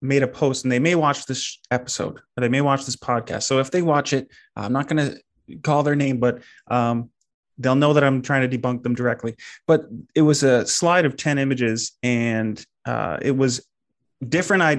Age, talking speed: 20-39, 210 wpm